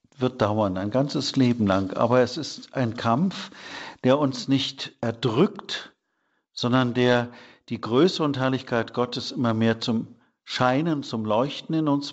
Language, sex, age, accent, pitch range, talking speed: German, male, 50-69, German, 115-140 Hz, 150 wpm